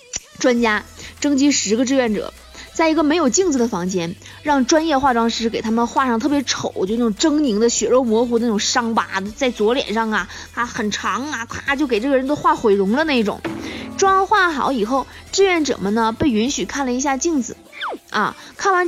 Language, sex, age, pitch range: Chinese, female, 20-39, 220-305 Hz